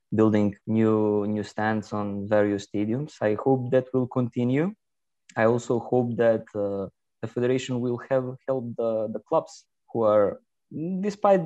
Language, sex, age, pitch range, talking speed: English, male, 20-39, 105-130 Hz, 145 wpm